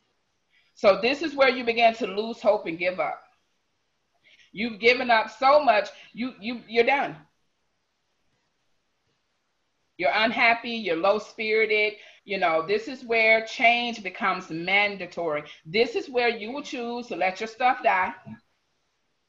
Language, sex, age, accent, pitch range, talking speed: English, female, 40-59, American, 185-245 Hz, 140 wpm